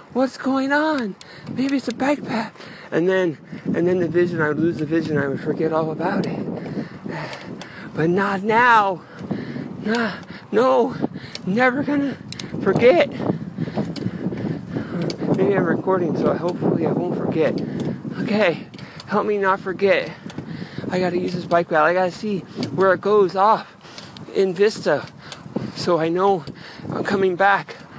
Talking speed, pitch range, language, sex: 145 wpm, 150-195 Hz, English, male